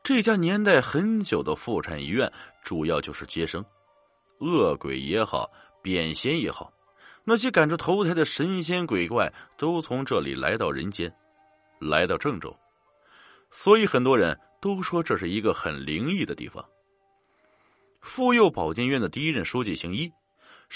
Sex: male